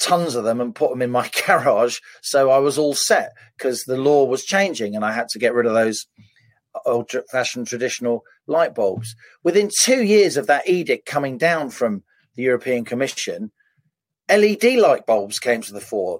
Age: 40-59